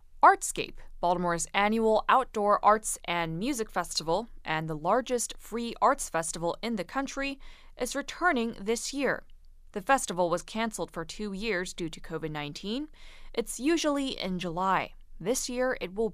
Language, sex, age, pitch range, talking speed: English, female, 20-39, 180-255 Hz, 145 wpm